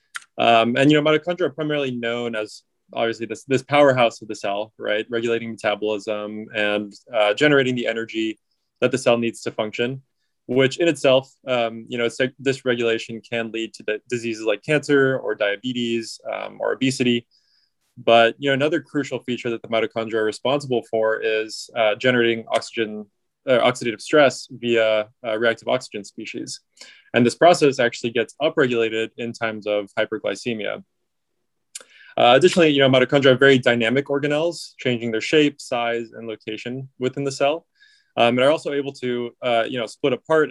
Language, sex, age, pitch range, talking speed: English, male, 20-39, 110-130 Hz, 170 wpm